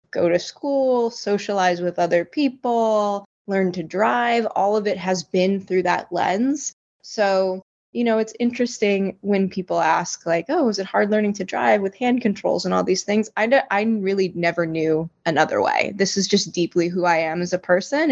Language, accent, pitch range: English, American, 180-220 Hz